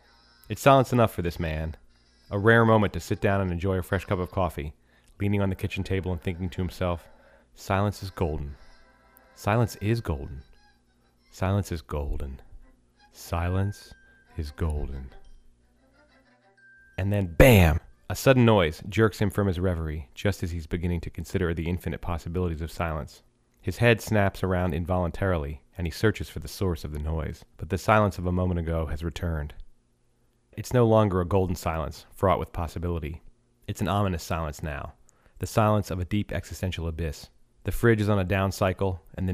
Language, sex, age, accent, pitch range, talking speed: English, male, 30-49, American, 80-100 Hz, 175 wpm